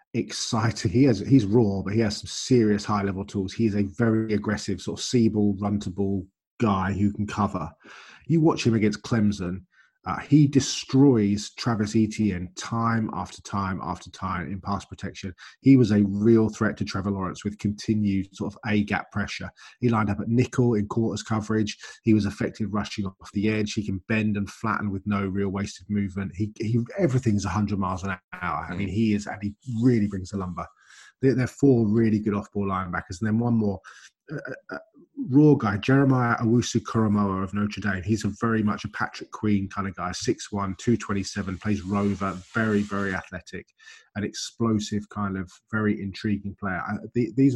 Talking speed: 180 wpm